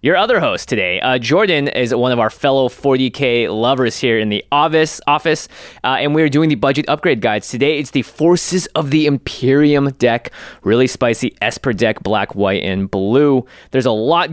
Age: 20-39